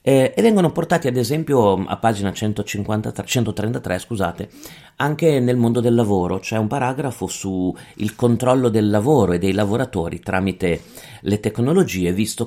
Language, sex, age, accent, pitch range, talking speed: Italian, male, 40-59, native, 90-115 Hz, 150 wpm